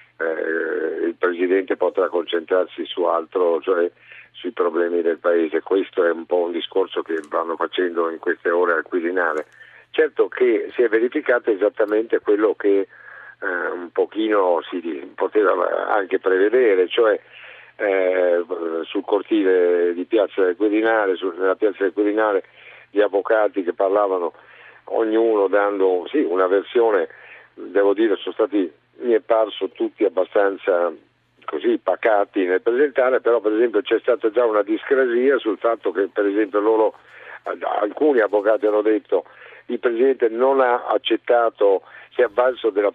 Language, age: Italian, 50-69